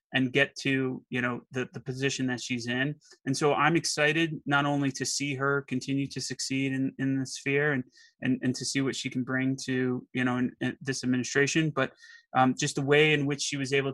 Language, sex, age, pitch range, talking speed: English, male, 20-39, 130-155 Hz, 230 wpm